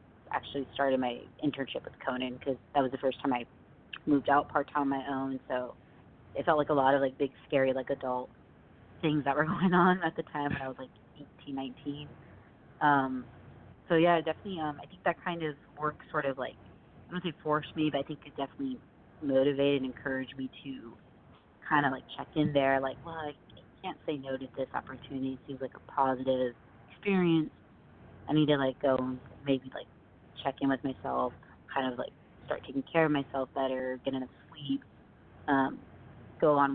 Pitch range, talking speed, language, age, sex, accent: 130-150 Hz, 200 wpm, English, 30-49, female, American